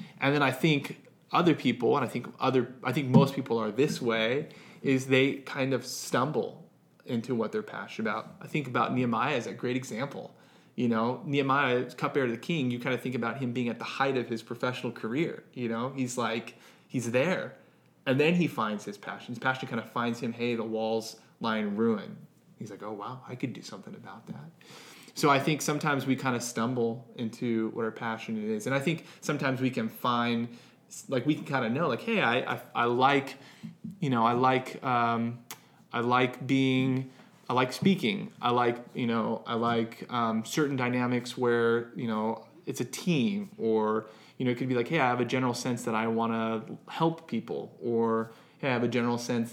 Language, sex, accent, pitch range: English, male, American, 115-135 Hz